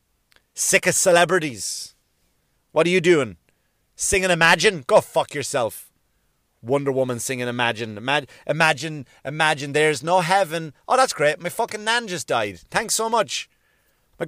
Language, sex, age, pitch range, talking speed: English, male, 30-49, 135-175 Hz, 145 wpm